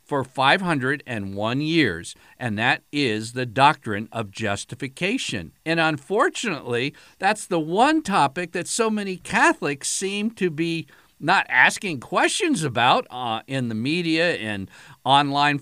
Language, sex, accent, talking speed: English, male, American, 125 wpm